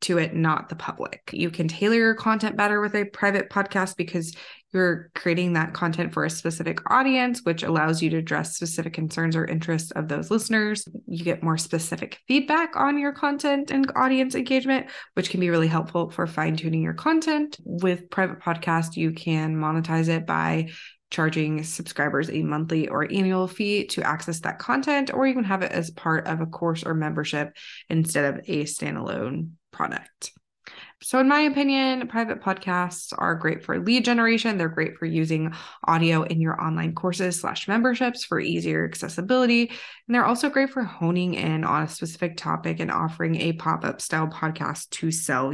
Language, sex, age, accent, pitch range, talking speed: English, female, 20-39, American, 160-215 Hz, 180 wpm